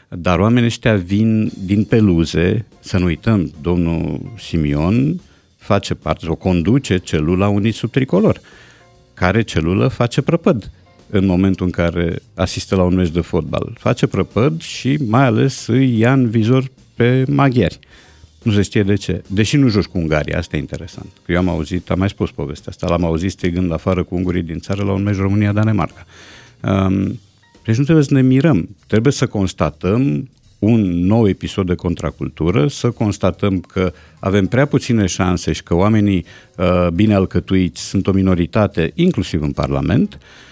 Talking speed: 165 wpm